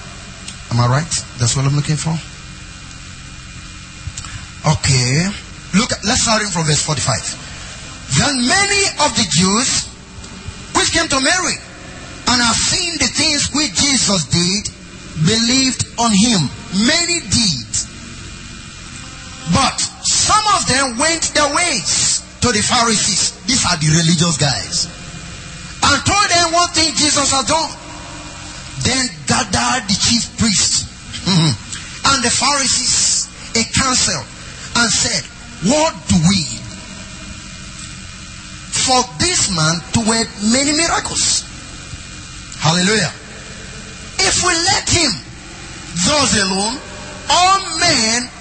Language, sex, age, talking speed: English, male, 30-49, 115 wpm